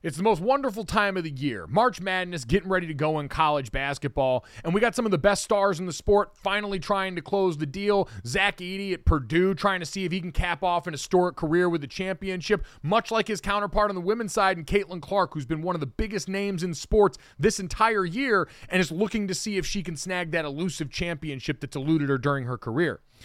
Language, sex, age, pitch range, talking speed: English, male, 30-49, 155-205 Hz, 240 wpm